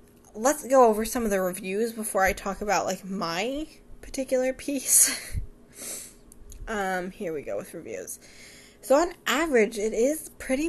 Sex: female